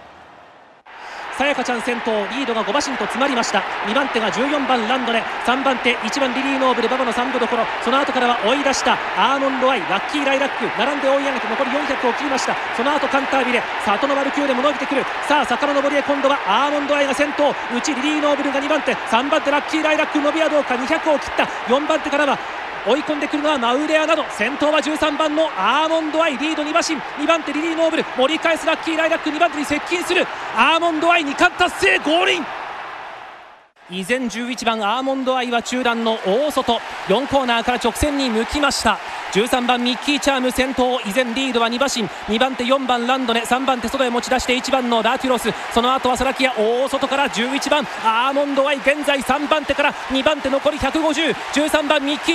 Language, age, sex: Japanese, 30-49, male